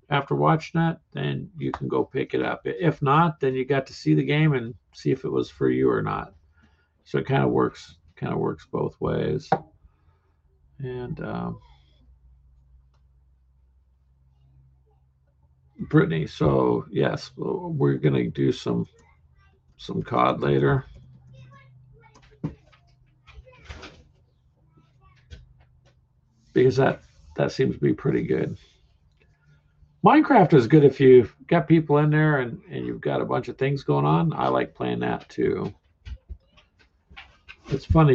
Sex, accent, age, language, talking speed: male, American, 50-69, English, 130 wpm